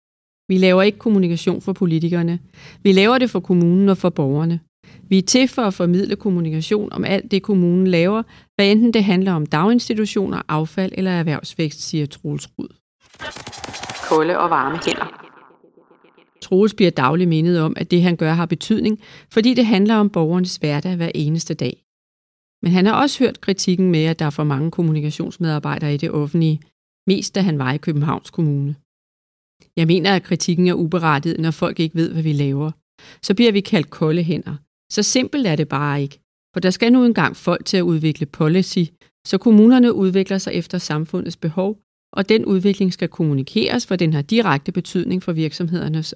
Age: 40-59